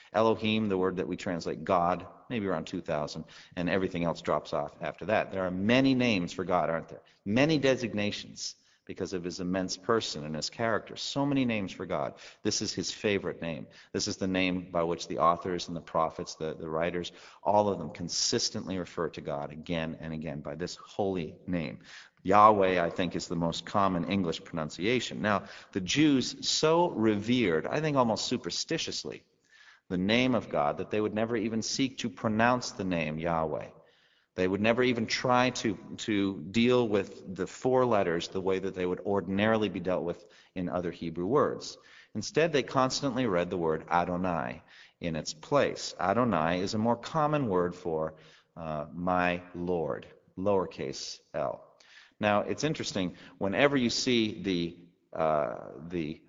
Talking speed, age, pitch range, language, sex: 175 wpm, 40-59, 85-115 Hz, English, male